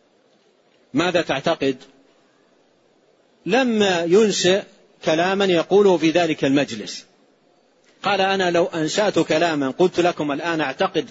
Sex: male